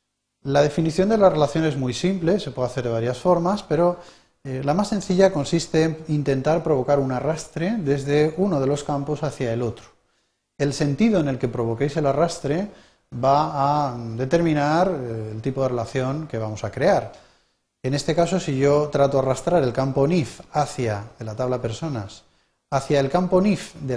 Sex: male